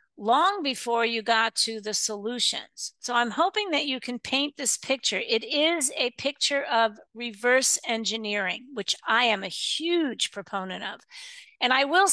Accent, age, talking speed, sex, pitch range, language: American, 50-69, 165 wpm, female, 210-270 Hz, English